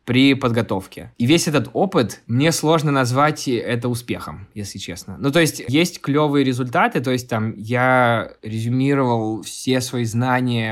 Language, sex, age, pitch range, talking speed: Russian, male, 20-39, 115-135 Hz, 150 wpm